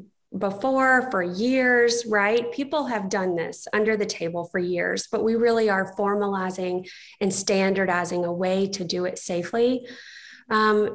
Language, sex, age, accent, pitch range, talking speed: English, female, 20-39, American, 185-220 Hz, 150 wpm